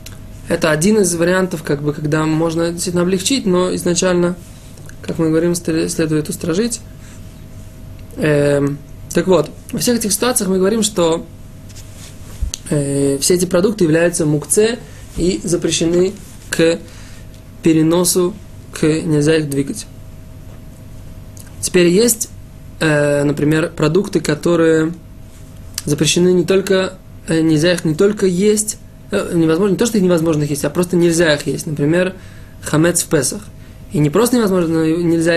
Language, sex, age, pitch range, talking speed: Russian, male, 20-39, 135-175 Hz, 125 wpm